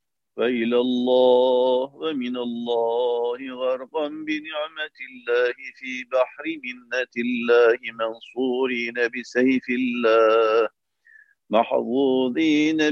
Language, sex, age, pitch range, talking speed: Turkish, male, 50-69, 125-160 Hz, 70 wpm